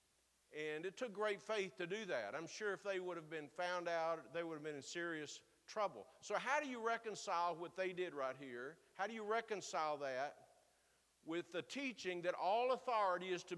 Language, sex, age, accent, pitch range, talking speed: English, male, 50-69, American, 165-210 Hz, 210 wpm